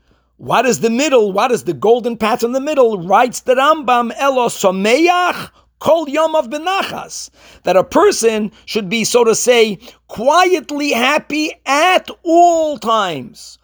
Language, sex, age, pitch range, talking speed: English, male, 50-69, 195-265 Hz, 150 wpm